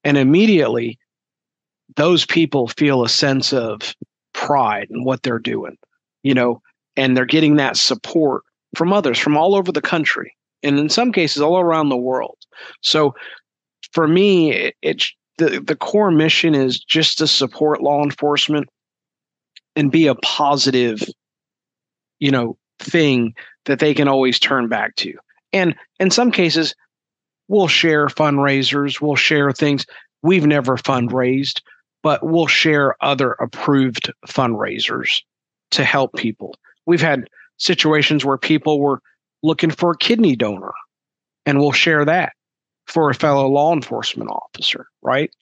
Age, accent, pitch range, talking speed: 40-59, American, 135-165 Hz, 140 wpm